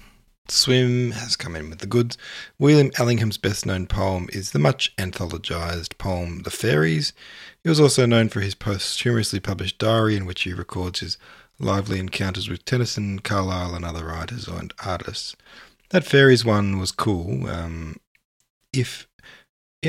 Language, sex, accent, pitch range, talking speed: English, male, Australian, 90-115 Hz, 150 wpm